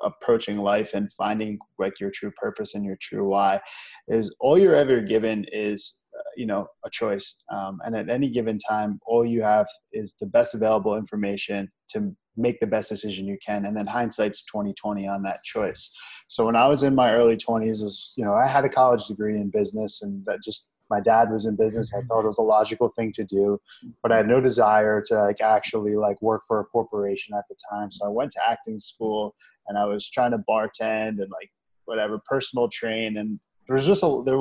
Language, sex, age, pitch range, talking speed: English, male, 20-39, 105-120 Hz, 220 wpm